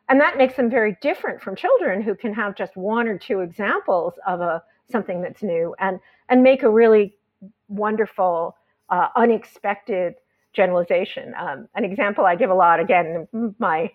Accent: American